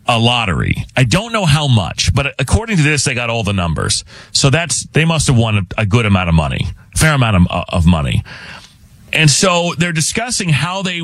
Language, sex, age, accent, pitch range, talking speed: English, male, 30-49, American, 110-150 Hz, 205 wpm